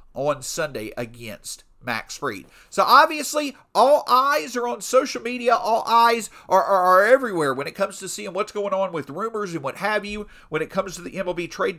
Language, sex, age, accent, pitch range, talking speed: English, male, 50-69, American, 150-210 Hz, 205 wpm